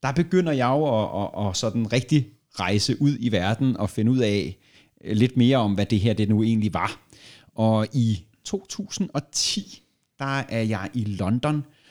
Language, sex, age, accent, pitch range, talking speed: Danish, male, 30-49, native, 100-125 Hz, 180 wpm